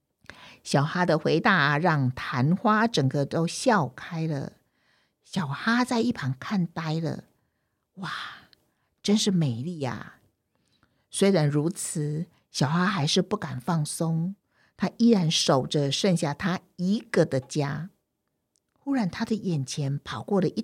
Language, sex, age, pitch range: Chinese, female, 50-69, 155-215 Hz